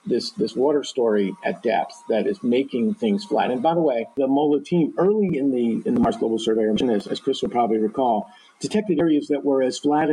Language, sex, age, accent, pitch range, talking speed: English, male, 50-69, American, 120-150 Hz, 225 wpm